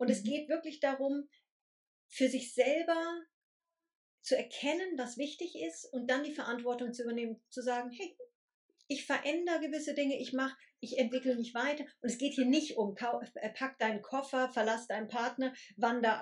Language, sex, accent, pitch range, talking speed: German, female, German, 235-285 Hz, 165 wpm